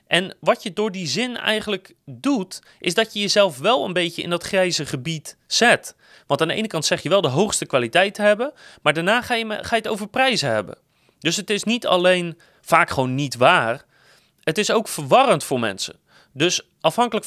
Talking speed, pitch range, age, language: 205 wpm, 145-215 Hz, 30-49, Dutch